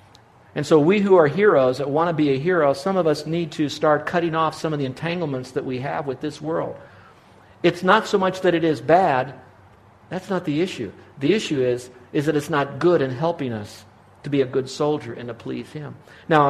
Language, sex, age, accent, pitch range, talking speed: English, male, 50-69, American, 125-155 Hz, 230 wpm